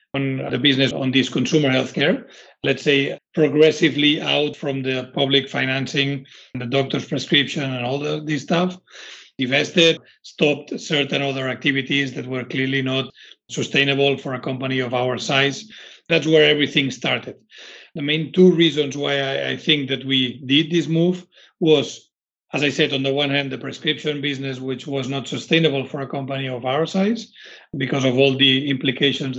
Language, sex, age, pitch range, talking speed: English, male, 40-59, 135-160 Hz, 165 wpm